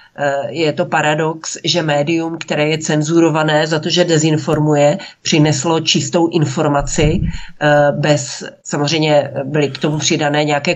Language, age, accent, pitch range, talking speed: Czech, 40-59, native, 145-165 Hz, 125 wpm